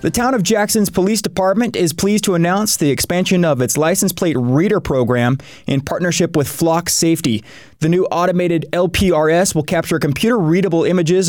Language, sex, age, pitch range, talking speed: English, male, 20-39, 140-170 Hz, 165 wpm